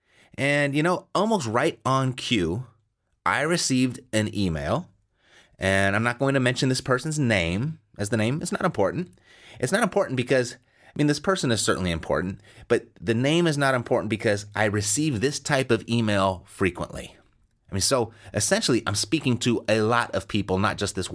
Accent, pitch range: American, 95-130 Hz